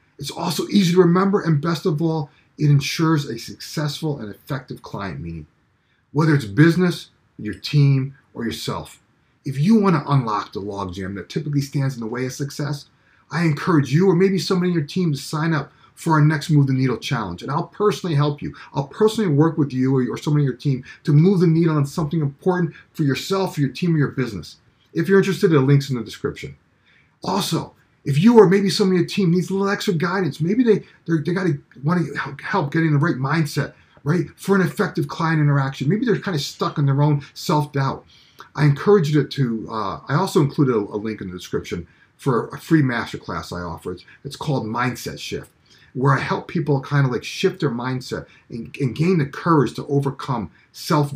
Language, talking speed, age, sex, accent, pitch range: English, 210 wpm, 30-49, male, American, 135-170 Hz